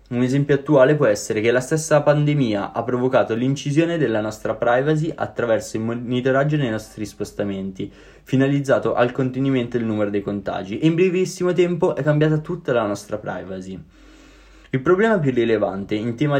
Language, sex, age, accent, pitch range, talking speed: Italian, male, 20-39, native, 115-150 Hz, 160 wpm